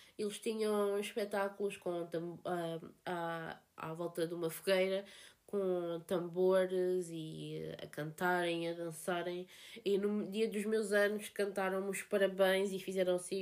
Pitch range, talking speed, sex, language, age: 185-215 Hz, 135 wpm, female, Portuguese, 20-39